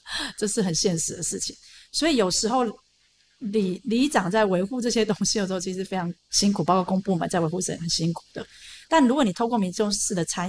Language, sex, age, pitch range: Chinese, female, 30-49, 180-230 Hz